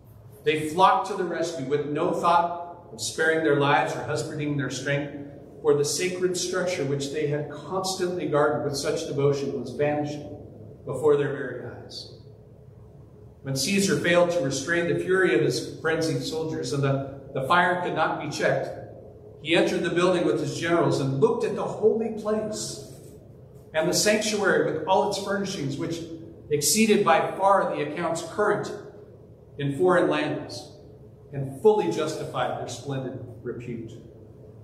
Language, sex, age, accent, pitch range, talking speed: English, male, 40-59, American, 135-175 Hz, 155 wpm